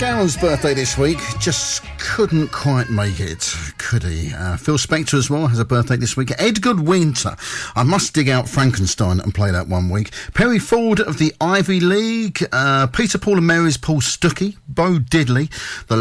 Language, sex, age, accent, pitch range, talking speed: English, male, 50-69, British, 115-180 Hz, 185 wpm